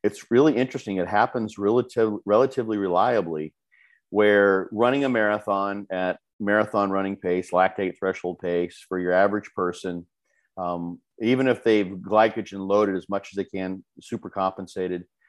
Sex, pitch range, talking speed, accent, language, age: male, 95-110 Hz, 135 wpm, American, English, 40-59